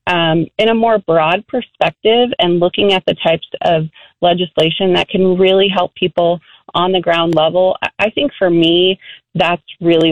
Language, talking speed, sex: English, 165 wpm, female